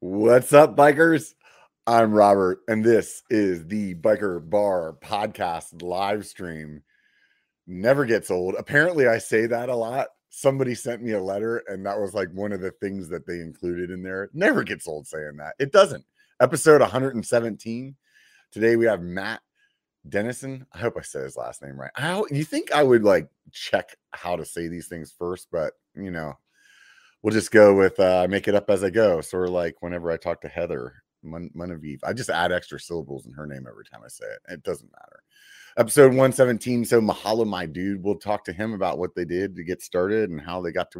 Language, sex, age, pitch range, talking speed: English, male, 30-49, 85-115 Hz, 200 wpm